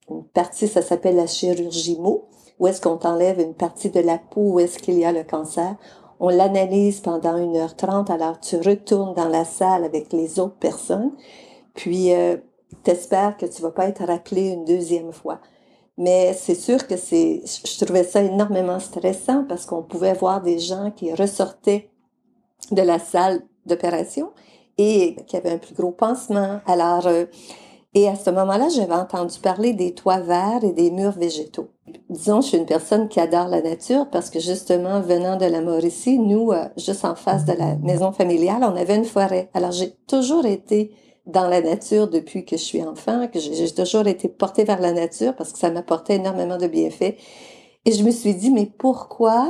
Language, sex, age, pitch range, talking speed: French, female, 50-69, 175-210 Hz, 190 wpm